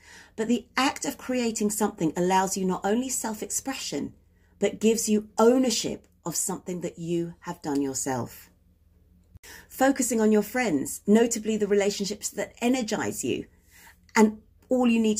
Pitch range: 165-230 Hz